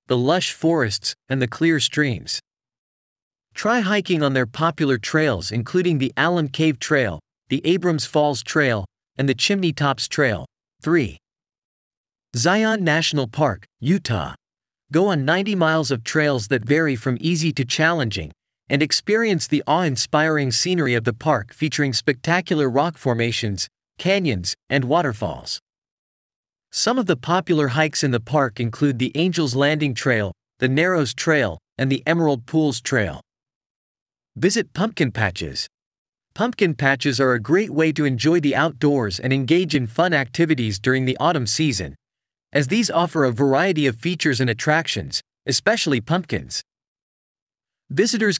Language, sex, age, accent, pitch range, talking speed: English, male, 40-59, American, 125-165 Hz, 140 wpm